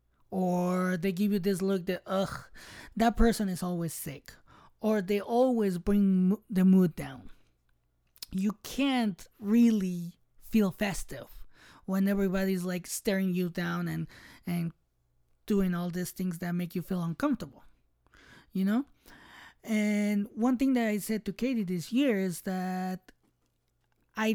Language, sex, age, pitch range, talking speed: English, male, 20-39, 175-210 Hz, 140 wpm